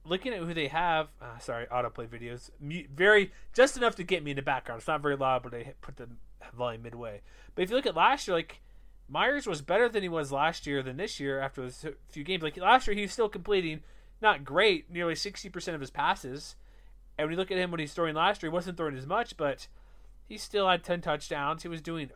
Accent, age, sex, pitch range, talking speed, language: American, 30-49, male, 130-185 Hz, 245 wpm, English